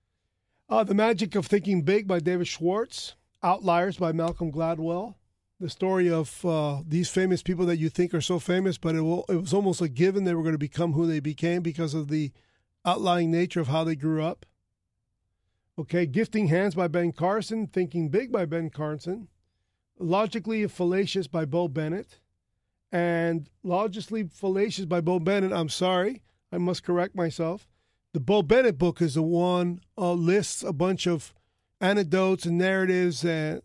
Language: English